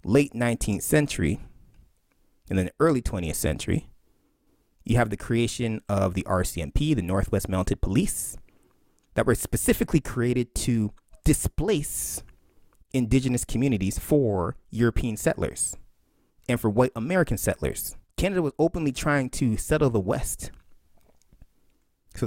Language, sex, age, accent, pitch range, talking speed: English, male, 30-49, American, 95-145 Hz, 120 wpm